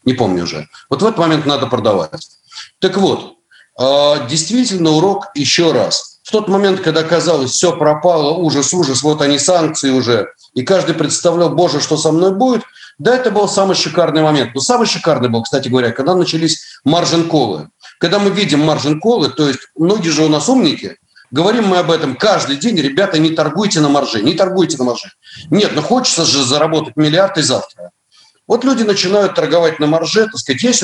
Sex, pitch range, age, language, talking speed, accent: male, 150-200 Hz, 40-59, Russian, 185 wpm, native